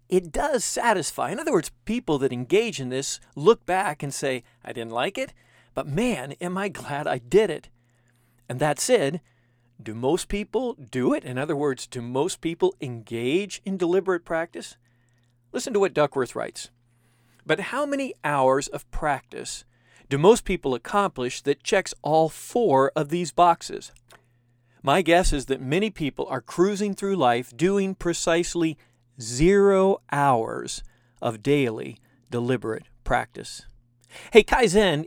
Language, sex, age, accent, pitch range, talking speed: English, male, 40-59, American, 120-185 Hz, 150 wpm